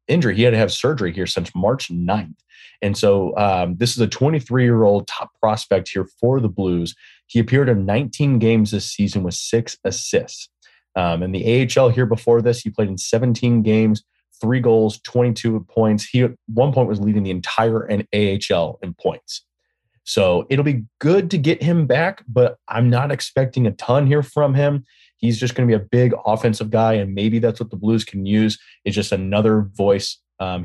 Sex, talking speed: male, 195 wpm